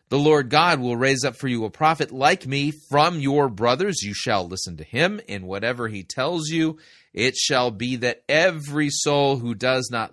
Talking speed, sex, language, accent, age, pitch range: 200 wpm, male, English, American, 30-49, 115-145 Hz